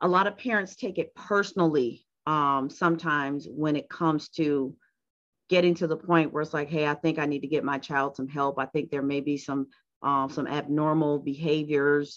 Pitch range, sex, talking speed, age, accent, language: 145-175 Hz, female, 200 wpm, 40-59, American, English